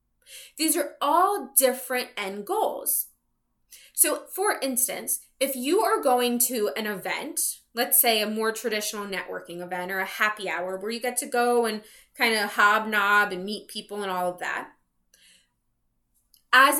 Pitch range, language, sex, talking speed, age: 205-290 Hz, English, female, 155 wpm, 20-39